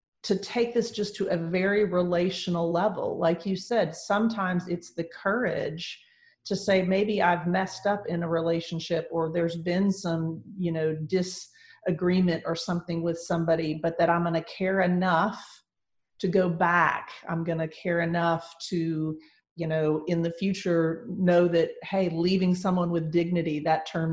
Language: English